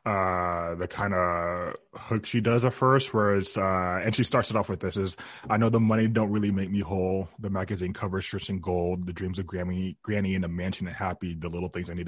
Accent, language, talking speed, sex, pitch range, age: American, English, 240 wpm, male, 95-115 Hz, 20-39